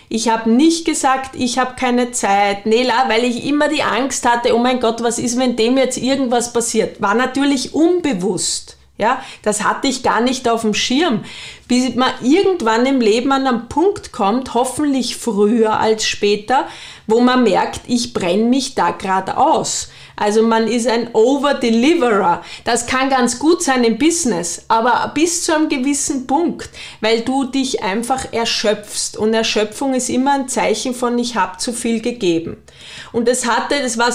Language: German